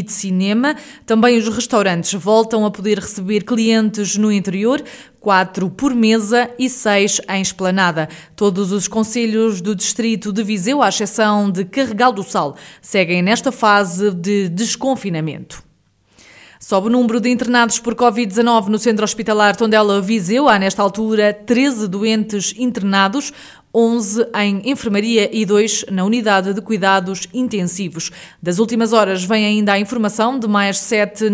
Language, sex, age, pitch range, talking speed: Portuguese, female, 20-39, 195-230 Hz, 145 wpm